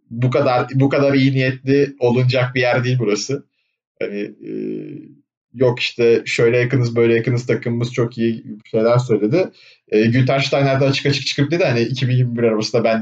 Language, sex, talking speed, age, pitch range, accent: Turkish, male, 160 wpm, 30-49, 120-155 Hz, native